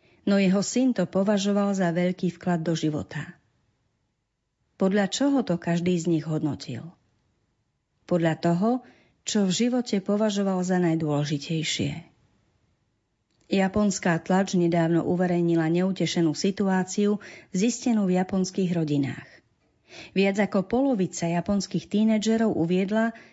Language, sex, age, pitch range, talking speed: Slovak, female, 40-59, 160-205 Hz, 105 wpm